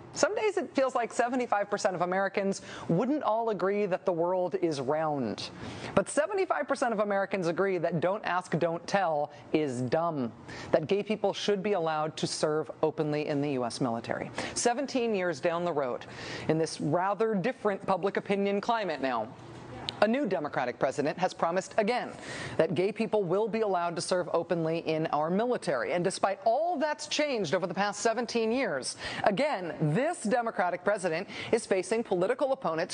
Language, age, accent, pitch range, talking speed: English, 40-59, American, 175-240 Hz, 165 wpm